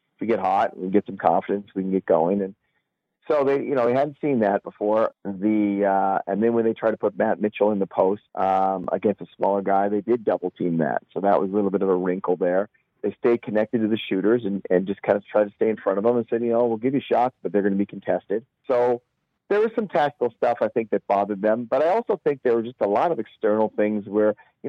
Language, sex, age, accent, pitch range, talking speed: English, male, 40-59, American, 100-115 Hz, 275 wpm